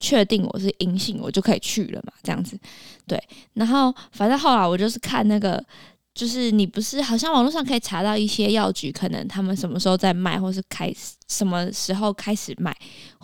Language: Chinese